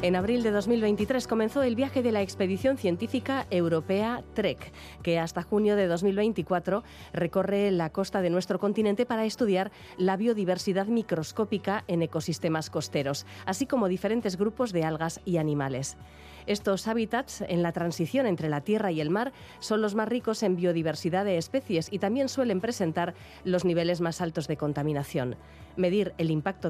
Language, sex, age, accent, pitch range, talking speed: Spanish, female, 30-49, Spanish, 165-210 Hz, 160 wpm